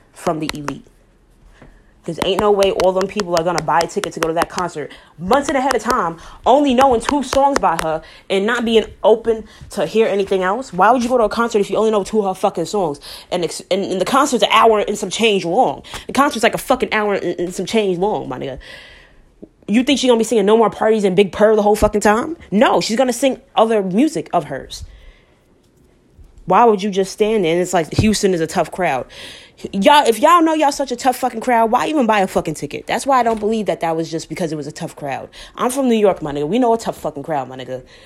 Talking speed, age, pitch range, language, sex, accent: 260 wpm, 20-39, 180-245 Hz, English, female, American